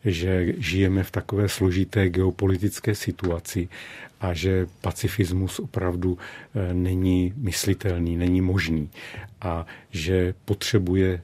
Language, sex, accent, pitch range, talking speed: Czech, male, native, 90-100 Hz, 95 wpm